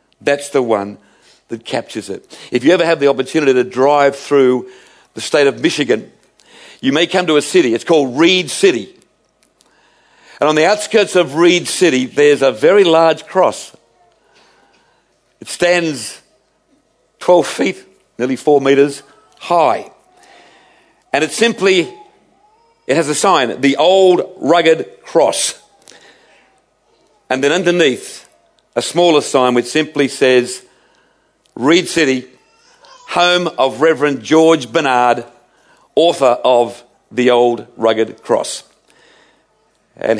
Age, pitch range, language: 50-69, 125-165 Hz, English